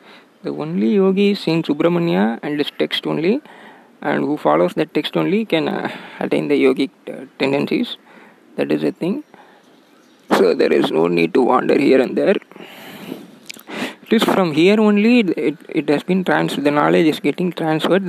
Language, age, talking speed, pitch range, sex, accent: Tamil, 20-39, 175 wpm, 150-200 Hz, male, native